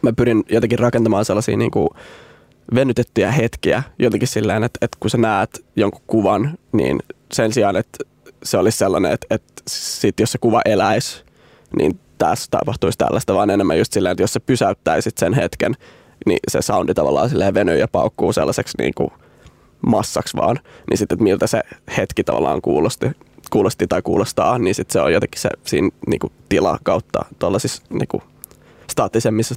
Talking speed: 170 wpm